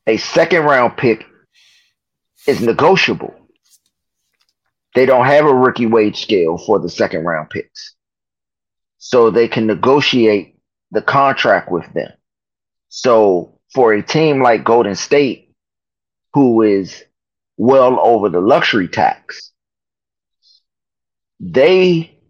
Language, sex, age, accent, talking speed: English, male, 30-49, American, 110 wpm